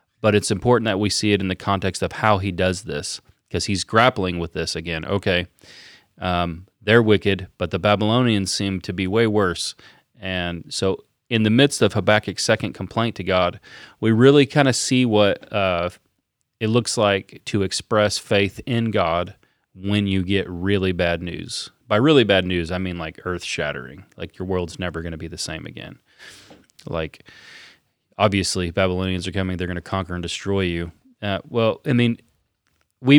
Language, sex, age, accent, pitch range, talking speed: English, male, 30-49, American, 90-110 Hz, 180 wpm